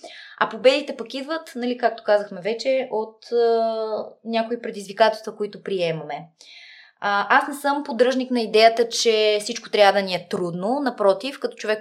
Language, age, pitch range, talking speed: Bulgarian, 20-39, 195-245 Hz, 160 wpm